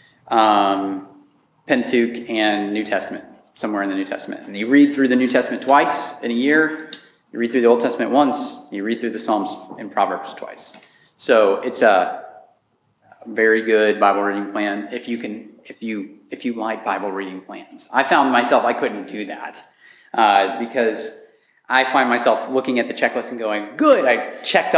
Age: 30-49